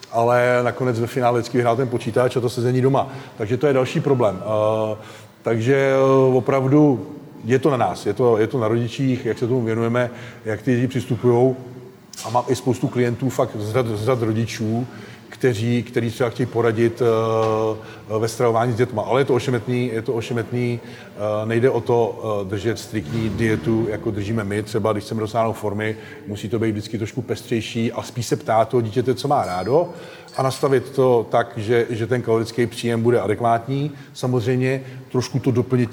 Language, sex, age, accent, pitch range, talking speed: Czech, male, 40-59, native, 110-125 Hz, 180 wpm